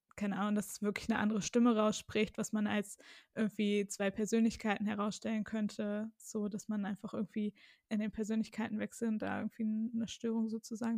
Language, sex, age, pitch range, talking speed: German, female, 20-39, 210-230 Hz, 170 wpm